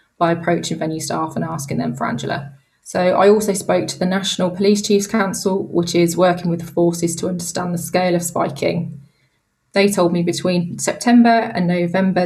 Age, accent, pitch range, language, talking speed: 20-39, British, 170-185 Hz, English, 185 wpm